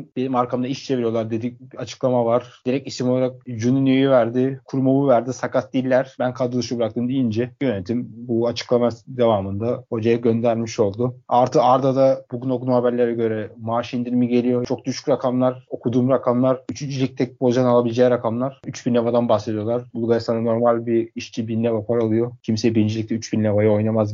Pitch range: 120-130 Hz